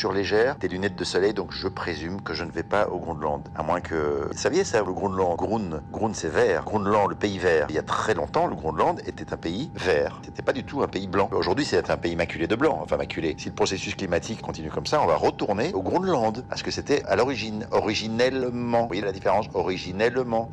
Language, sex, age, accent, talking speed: French, male, 50-69, French, 240 wpm